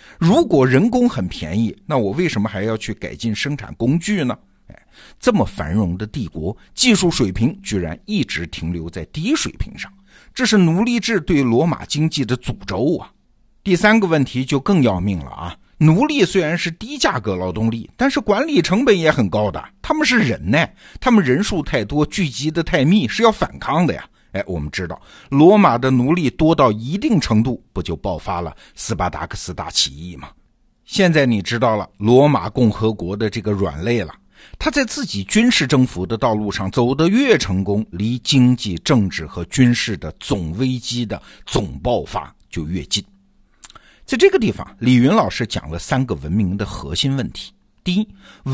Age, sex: 50-69, male